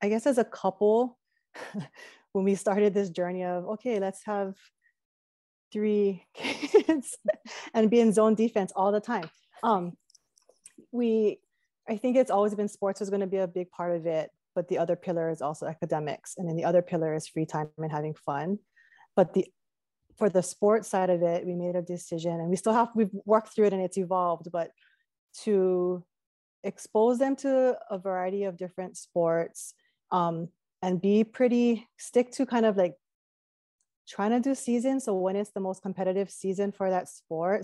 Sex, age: female, 20-39